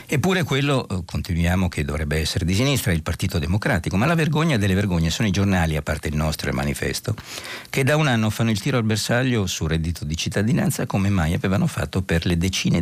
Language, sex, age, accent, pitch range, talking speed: Italian, male, 60-79, native, 85-115 Hz, 215 wpm